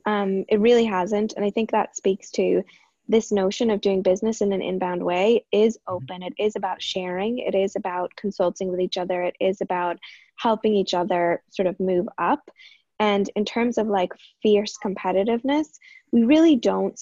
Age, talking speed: 20-39, 185 wpm